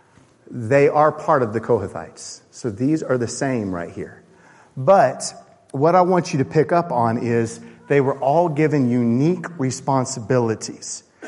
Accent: American